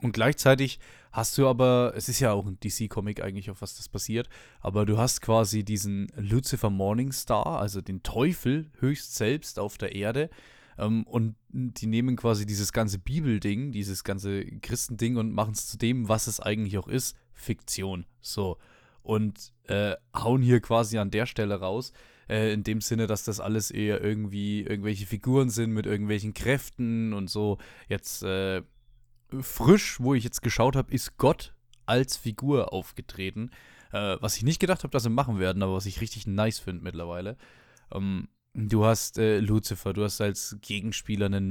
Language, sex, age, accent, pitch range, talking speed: German, male, 20-39, German, 100-120 Hz, 175 wpm